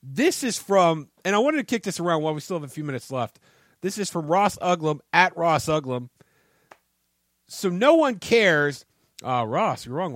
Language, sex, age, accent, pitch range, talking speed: English, male, 40-59, American, 150-200 Hz, 200 wpm